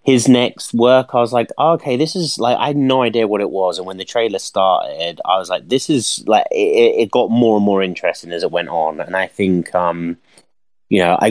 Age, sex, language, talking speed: 30-49, male, English, 245 wpm